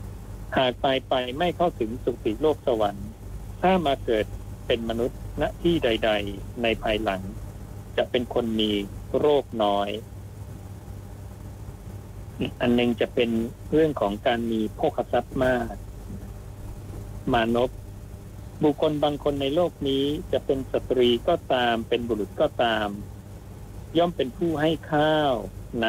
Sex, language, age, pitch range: male, Thai, 60-79, 100-130 Hz